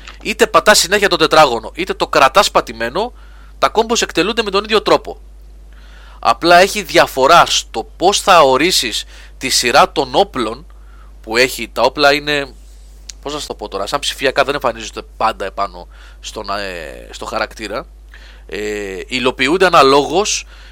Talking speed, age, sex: 145 wpm, 30-49, male